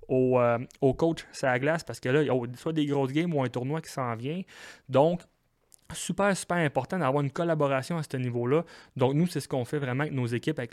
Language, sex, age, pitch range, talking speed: French, male, 30-49, 120-150 Hz, 245 wpm